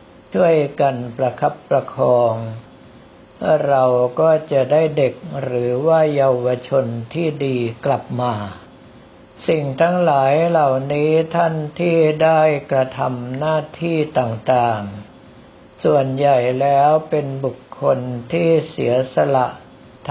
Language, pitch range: Thai, 125-155 Hz